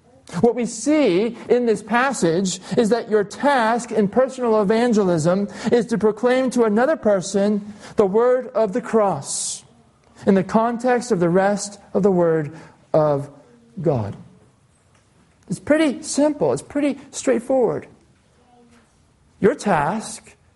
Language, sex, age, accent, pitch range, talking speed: English, male, 50-69, American, 170-225 Hz, 125 wpm